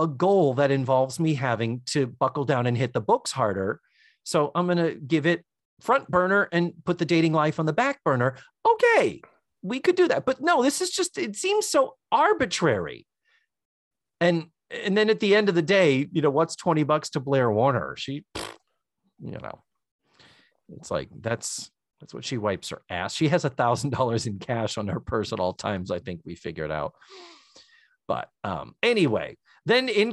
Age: 40-59